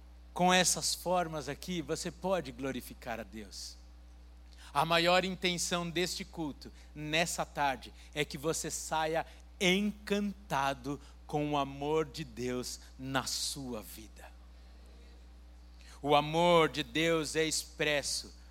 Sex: male